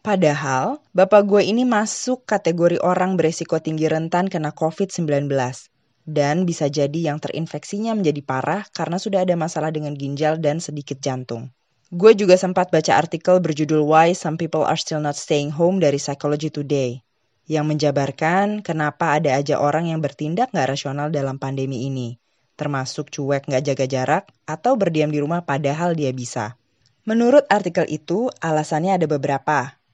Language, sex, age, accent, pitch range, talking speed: Indonesian, female, 20-39, native, 145-185 Hz, 150 wpm